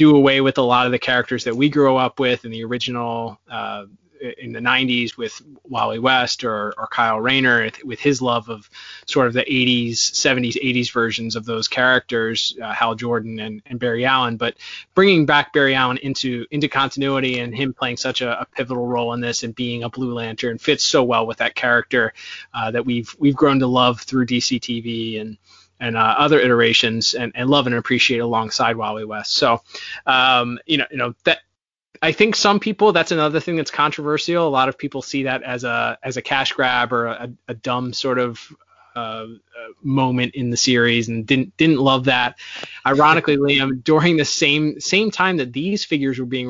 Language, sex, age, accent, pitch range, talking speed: English, male, 20-39, American, 120-140 Hz, 205 wpm